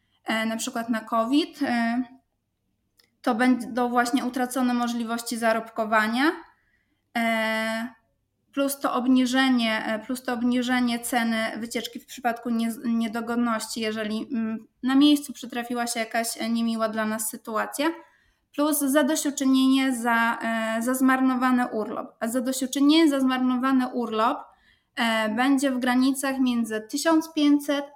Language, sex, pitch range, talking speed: Polish, female, 230-265 Hz, 100 wpm